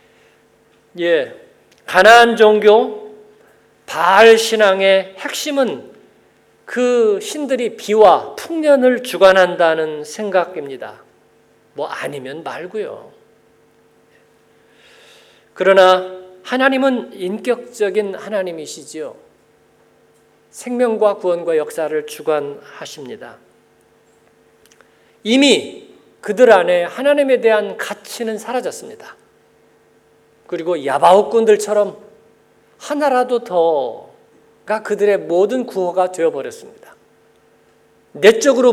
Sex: male